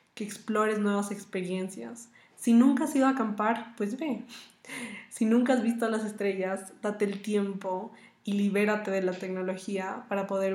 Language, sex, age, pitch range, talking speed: Spanish, female, 20-39, 195-215 Hz, 165 wpm